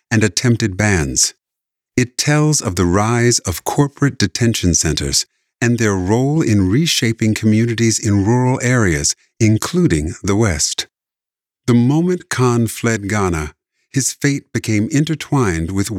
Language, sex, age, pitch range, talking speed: English, male, 50-69, 95-120 Hz, 130 wpm